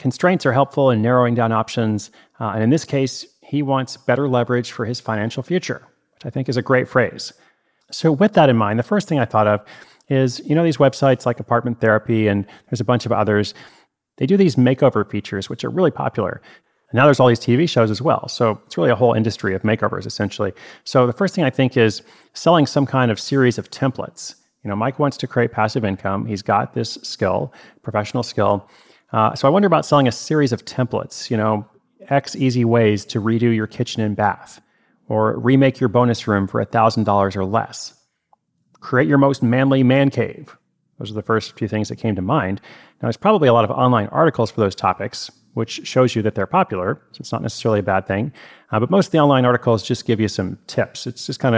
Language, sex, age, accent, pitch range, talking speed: English, male, 30-49, American, 110-135 Hz, 225 wpm